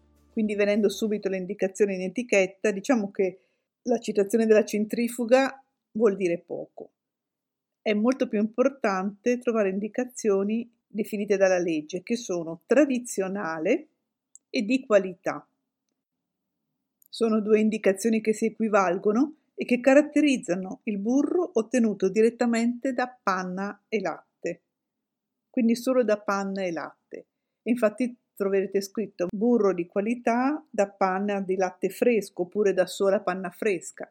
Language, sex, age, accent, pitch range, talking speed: Italian, female, 50-69, native, 185-235 Hz, 125 wpm